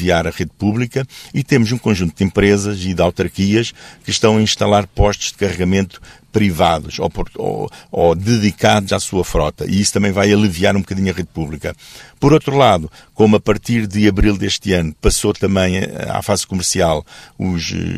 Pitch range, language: 90-110 Hz, Portuguese